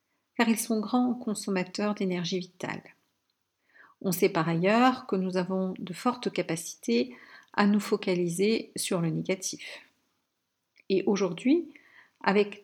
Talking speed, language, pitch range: 125 wpm, French, 185-245 Hz